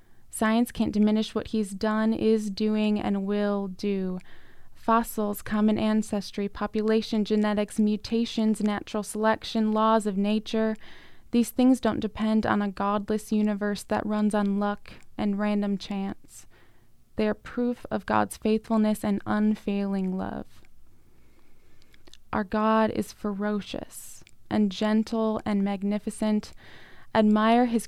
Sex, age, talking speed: female, 20-39, 120 wpm